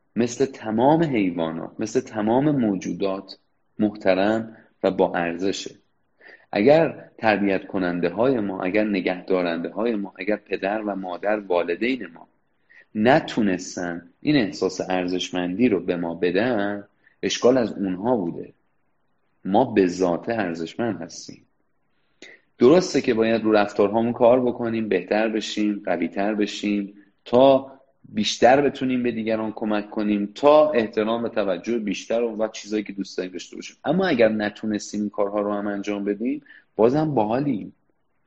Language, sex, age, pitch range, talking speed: Persian, male, 30-49, 100-125 Hz, 135 wpm